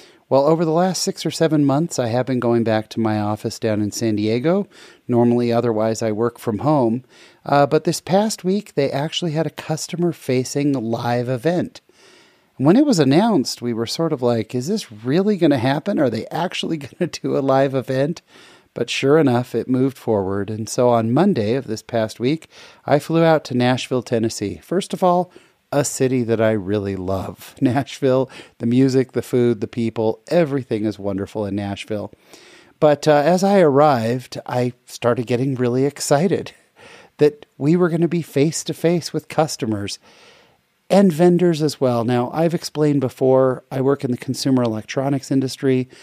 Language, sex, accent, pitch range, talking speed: English, male, American, 120-155 Hz, 180 wpm